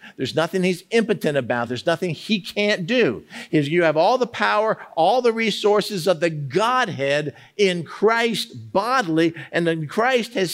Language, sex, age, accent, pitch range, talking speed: English, male, 50-69, American, 140-205 Hz, 160 wpm